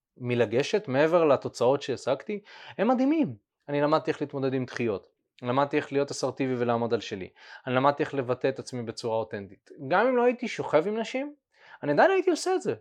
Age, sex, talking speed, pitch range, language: 20-39, male, 190 wpm, 125-210 Hz, Hebrew